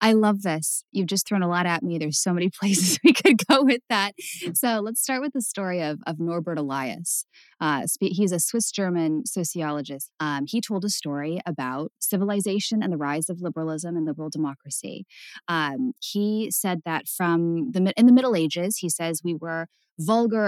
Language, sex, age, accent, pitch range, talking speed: English, female, 10-29, American, 160-205 Hz, 190 wpm